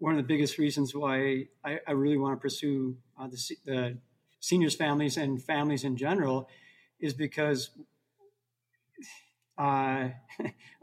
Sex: male